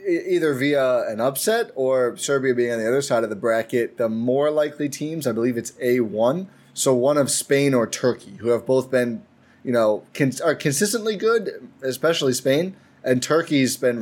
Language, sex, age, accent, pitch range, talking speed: English, male, 20-39, American, 120-145 Hz, 185 wpm